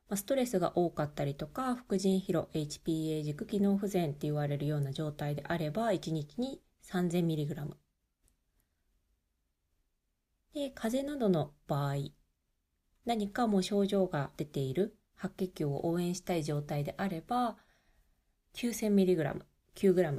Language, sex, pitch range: Japanese, female, 140-205 Hz